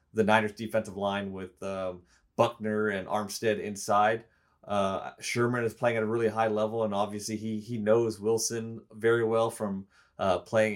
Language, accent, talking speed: English, American, 165 wpm